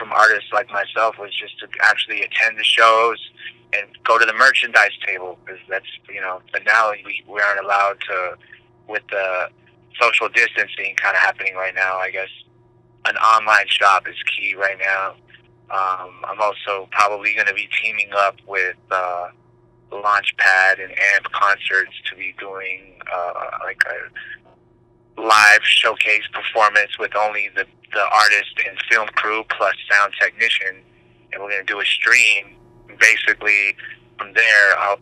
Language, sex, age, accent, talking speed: English, male, 20-39, American, 160 wpm